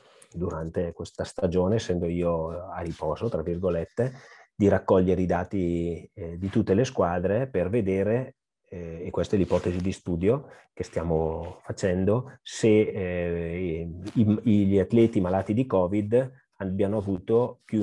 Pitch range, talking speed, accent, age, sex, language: 90-100 Hz, 140 wpm, native, 30-49, male, Italian